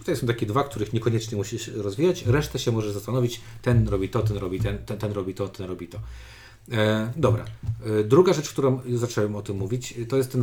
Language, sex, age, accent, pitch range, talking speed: Polish, male, 40-59, native, 105-125 Hz, 225 wpm